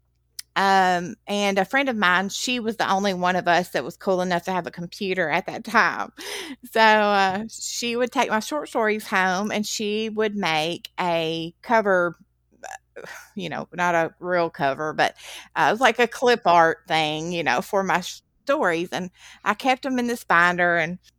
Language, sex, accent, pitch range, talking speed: English, female, American, 175-215 Hz, 190 wpm